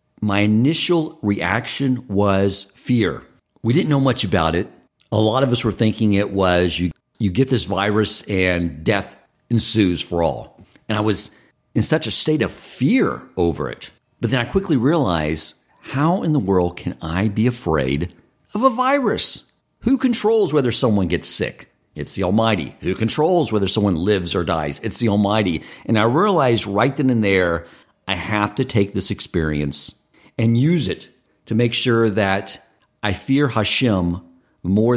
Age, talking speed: 50-69, 170 wpm